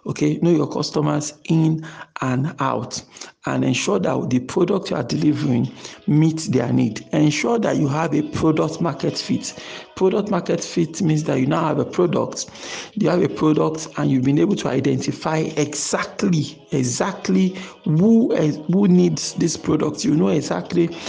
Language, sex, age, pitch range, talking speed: English, male, 50-69, 145-175 Hz, 160 wpm